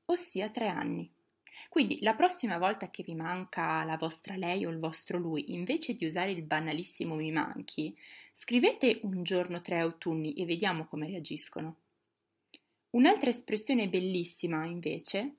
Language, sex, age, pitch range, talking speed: Italian, female, 20-39, 175-270 Hz, 145 wpm